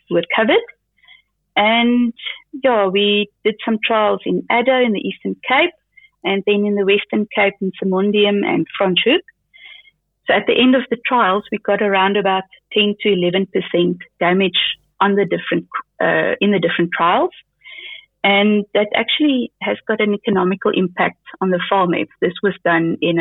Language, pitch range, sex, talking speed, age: English, 185-235 Hz, female, 160 wpm, 30-49